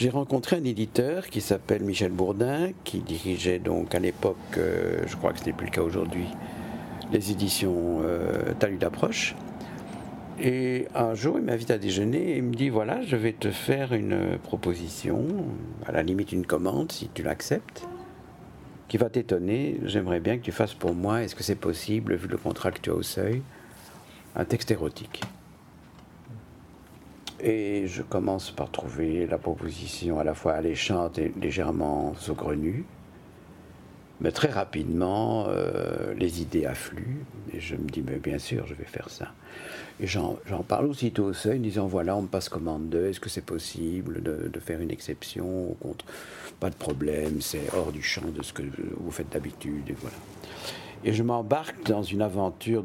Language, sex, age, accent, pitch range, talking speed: French, male, 50-69, French, 85-115 Hz, 180 wpm